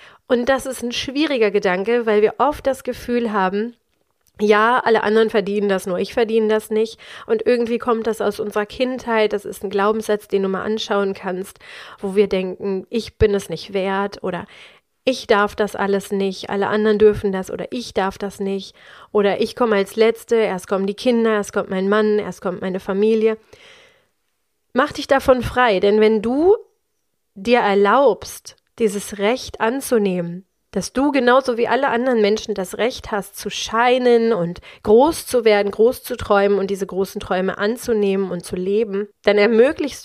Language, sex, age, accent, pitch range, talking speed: German, female, 30-49, German, 200-240 Hz, 180 wpm